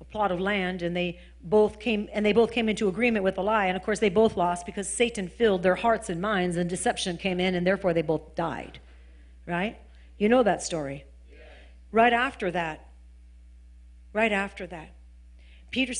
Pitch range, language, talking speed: 165-225 Hz, English, 190 wpm